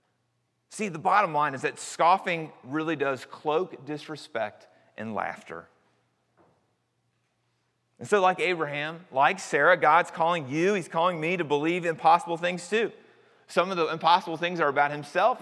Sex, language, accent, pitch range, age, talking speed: male, English, American, 140-180 Hz, 30-49, 150 wpm